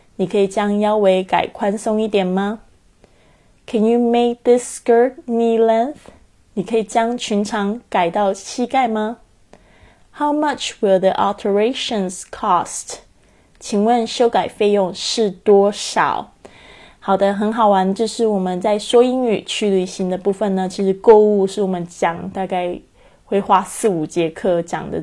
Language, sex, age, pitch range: Chinese, female, 20-39, 185-220 Hz